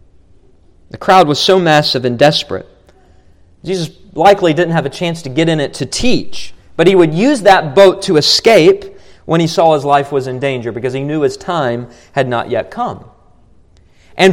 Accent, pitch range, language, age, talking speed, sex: American, 165-245 Hz, English, 40-59, 190 wpm, male